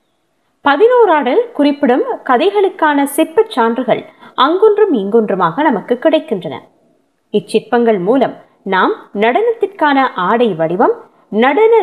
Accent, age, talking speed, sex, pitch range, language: native, 20-39, 80 wpm, female, 220-330 Hz, Tamil